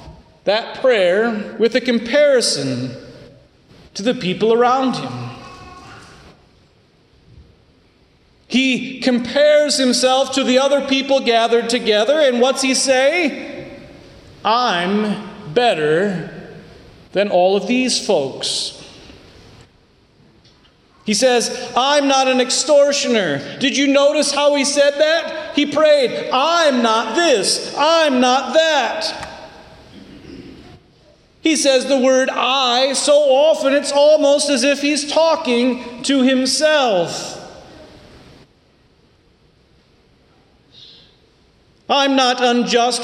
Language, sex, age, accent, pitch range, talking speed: English, male, 40-59, American, 245-295 Hz, 95 wpm